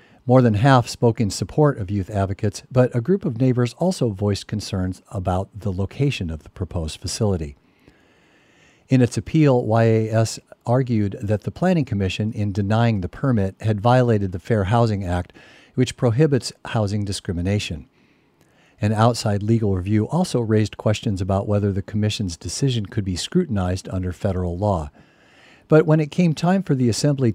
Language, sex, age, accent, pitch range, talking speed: English, male, 50-69, American, 95-125 Hz, 160 wpm